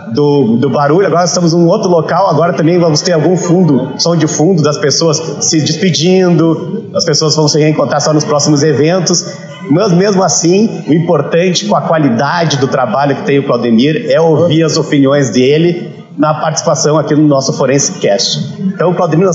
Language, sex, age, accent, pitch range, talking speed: Portuguese, male, 30-49, Brazilian, 145-180 Hz, 190 wpm